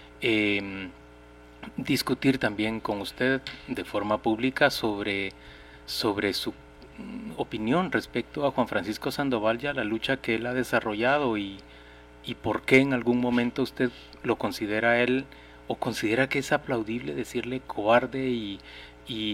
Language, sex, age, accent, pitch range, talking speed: Spanish, male, 30-49, Mexican, 100-125 Hz, 135 wpm